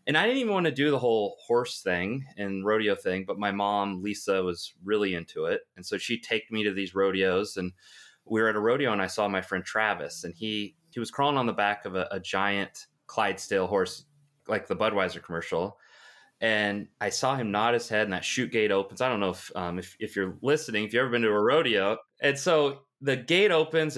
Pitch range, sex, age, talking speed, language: 100-135 Hz, male, 20-39, 235 wpm, English